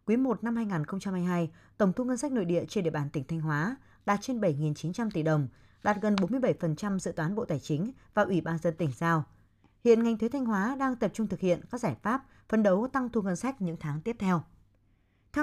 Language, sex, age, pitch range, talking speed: Vietnamese, female, 20-39, 160-230 Hz, 230 wpm